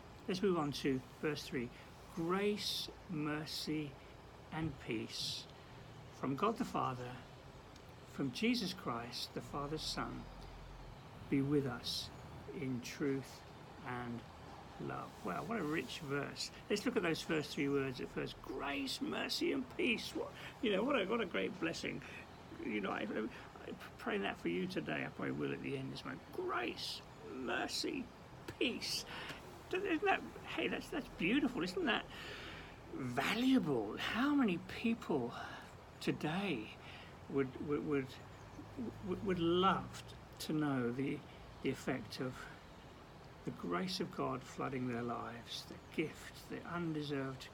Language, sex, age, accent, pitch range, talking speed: English, male, 60-79, British, 130-195 Hz, 140 wpm